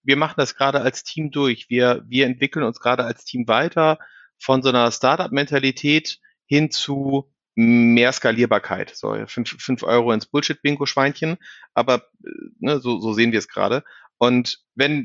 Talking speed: 155 wpm